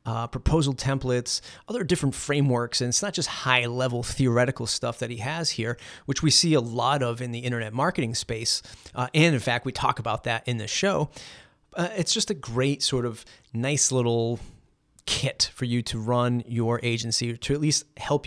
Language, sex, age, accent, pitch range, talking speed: English, male, 30-49, American, 115-135 Hz, 195 wpm